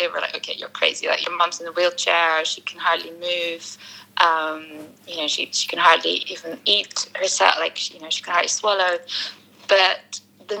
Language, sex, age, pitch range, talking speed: English, female, 20-39, 170-210 Hz, 205 wpm